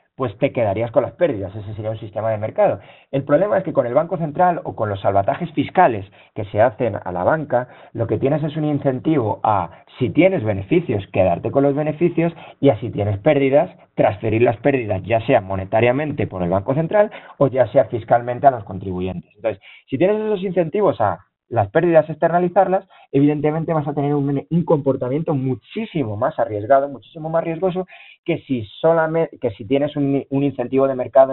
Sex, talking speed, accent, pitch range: male, 190 wpm, Spanish, 110-155 Hz